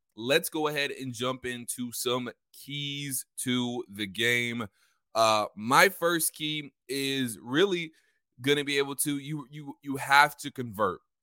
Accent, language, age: American, English, 20-39